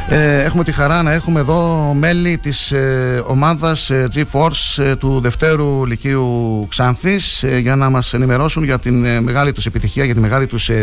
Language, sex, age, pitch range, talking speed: Greek, male, 60-79, 115-145 Hz, 190 wpm